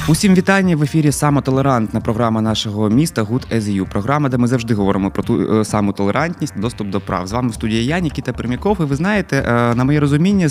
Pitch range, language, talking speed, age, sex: 110-140 Hz, Ukrainian, 185 wpm, 20-39, male